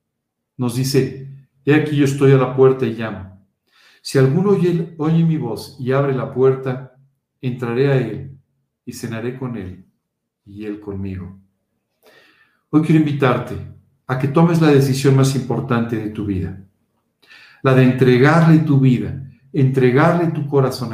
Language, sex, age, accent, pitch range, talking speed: Spanish, male, 50-69, Mexican, 120-140 Hz, 150 wpm